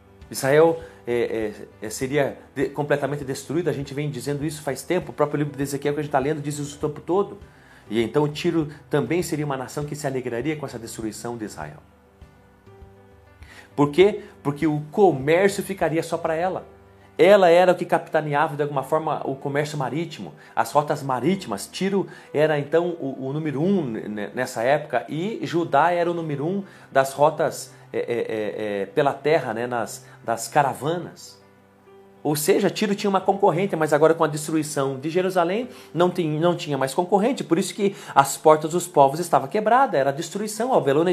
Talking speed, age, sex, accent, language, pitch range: 180 wpm, 40-59, male, Brazilian, Portuguese, 130-180 Hz